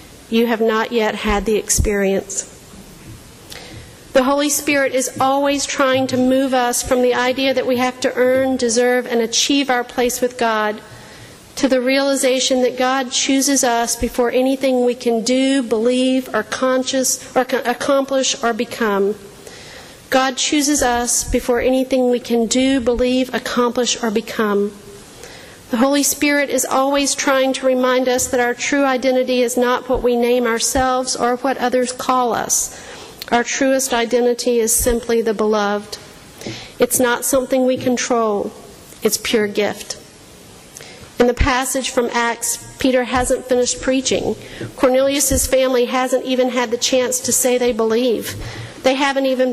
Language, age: English, 50-69